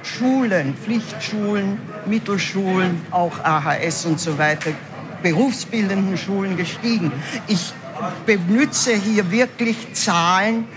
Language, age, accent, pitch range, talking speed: German, 60-79, German, 175-230 Hz, 90 wpm